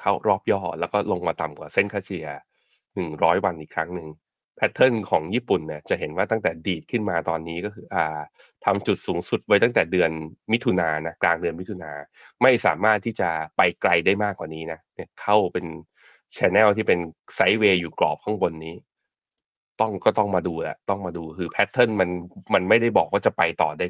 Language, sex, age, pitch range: Thai, male, 20-39, 85-105 Hz